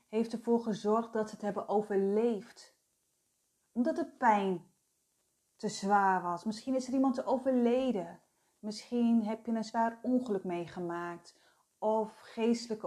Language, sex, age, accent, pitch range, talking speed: Dutch, female, 30-49, Dutch, 195-265 Hz, 130 wpm